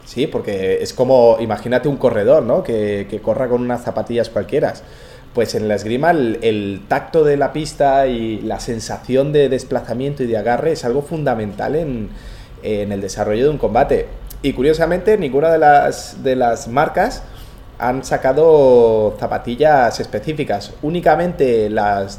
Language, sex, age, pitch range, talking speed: Spanish, male, 30-49, 110-140 Hz, 155 wpm